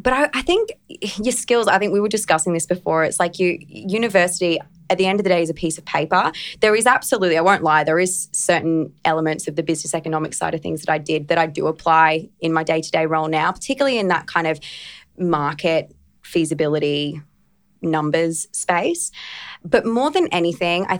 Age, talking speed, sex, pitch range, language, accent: 20-39, 200 wpm, female, 165-190 Hz, English, Australian